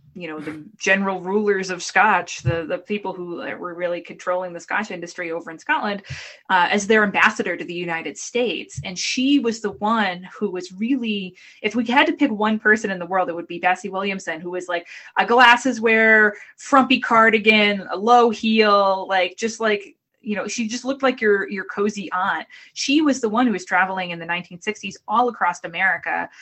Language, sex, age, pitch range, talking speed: English, female, 20-39, 175-215 Hz, 200 wpm